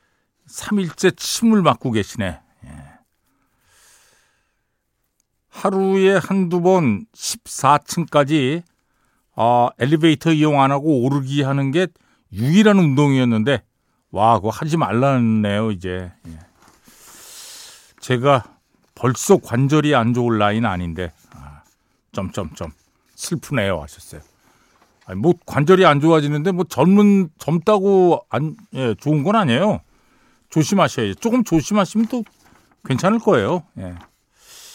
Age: 50-69